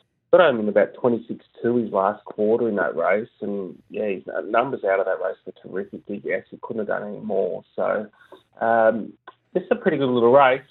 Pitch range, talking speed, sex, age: 110-125 Hz, 205 wpm, male, 30-49